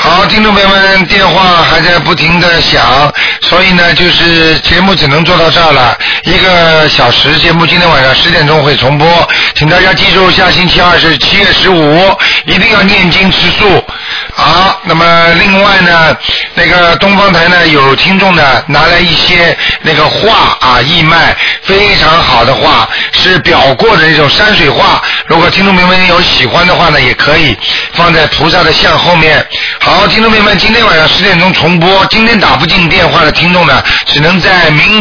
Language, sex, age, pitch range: Chinese, male, 50-69, 155-185 Hz